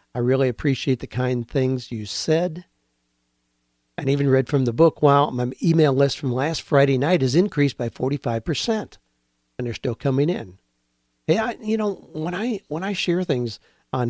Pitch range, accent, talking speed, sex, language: 120-155 Hz, American, 175 wpm, male, English